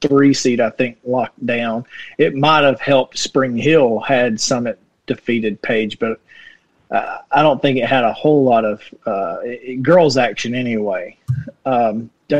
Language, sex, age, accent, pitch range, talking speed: English, male, 30-49, American, 120-150 Hz, 150 wpm